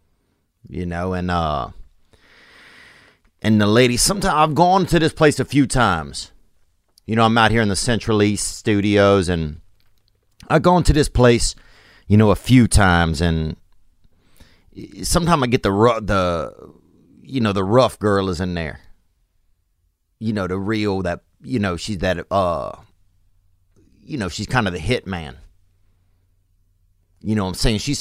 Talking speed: 160 wpm